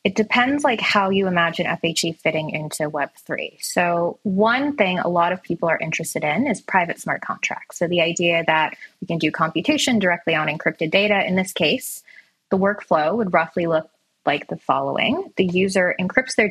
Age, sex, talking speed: 20-39, female, 185 wpm